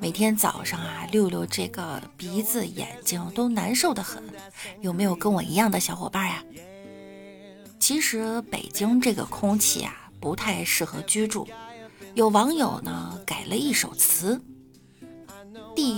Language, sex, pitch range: Chinese, female, 190-245 Hz